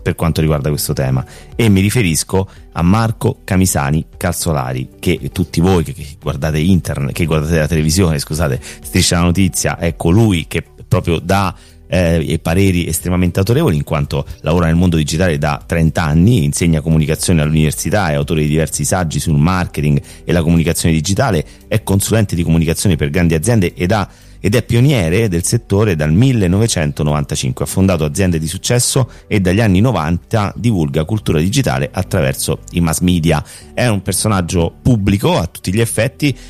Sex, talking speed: male, 160 wpm